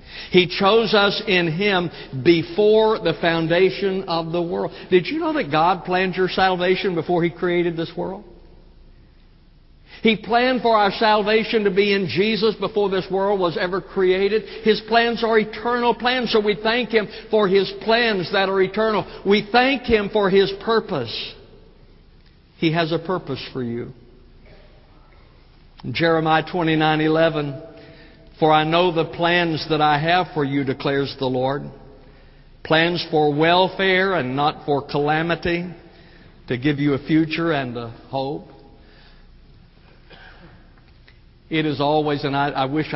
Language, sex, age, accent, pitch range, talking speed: English, male, 60-79, American, 135-190 Hz, 145 wpm